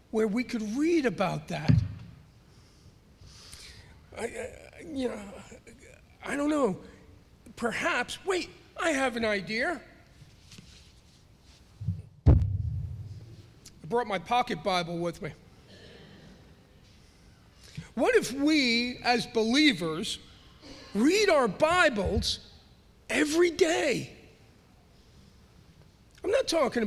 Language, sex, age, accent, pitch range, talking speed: English, male, 40-59, American, 170-250 Hz, 85 wpm